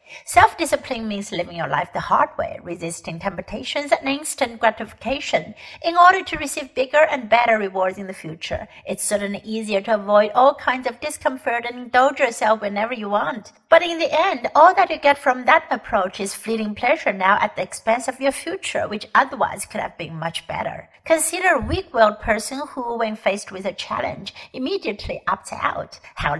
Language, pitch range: Chinese, 205-275 Hz